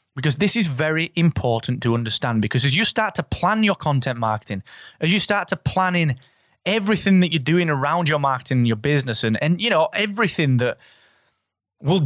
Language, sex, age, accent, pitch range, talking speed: English, male, 20-39, British, 125-180 Hz, 190 wpm